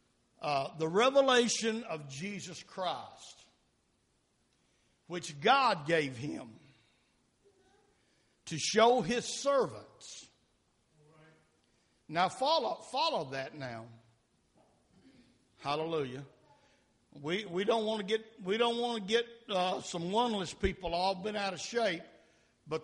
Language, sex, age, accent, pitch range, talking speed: English, male, 60-79, American, 160-225 Hz, 110 wpm